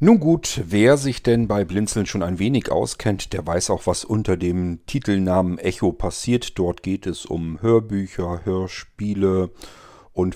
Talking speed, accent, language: 155 wpm, German, German